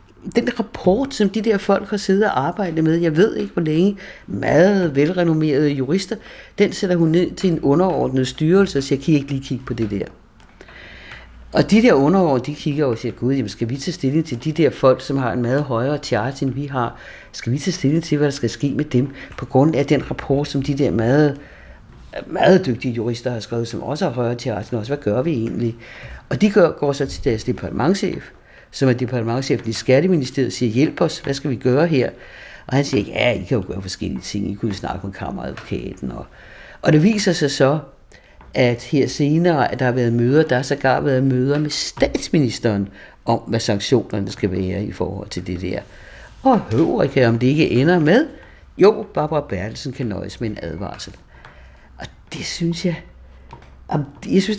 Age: 60-79